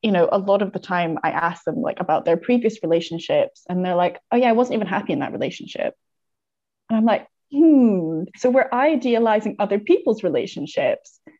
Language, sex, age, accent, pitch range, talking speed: English, female, 20-39, British, 175-220 Hz, 195 wpm